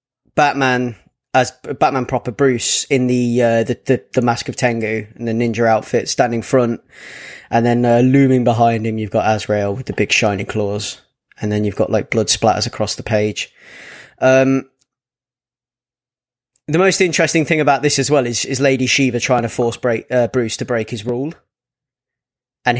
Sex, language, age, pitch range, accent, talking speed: male, English, 20-39, 115-140 Hz, British, 175 wpm